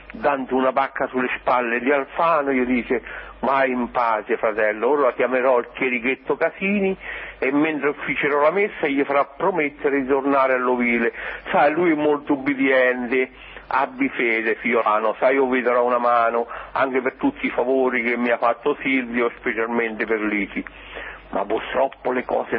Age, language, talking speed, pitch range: 60-79, Italian, 160 wpm, 130-205 Hz